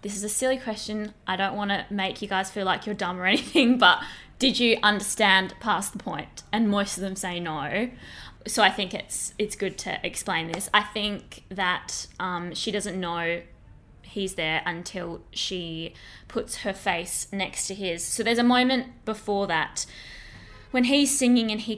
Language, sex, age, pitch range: English, female, 20-39, 175-205 Hz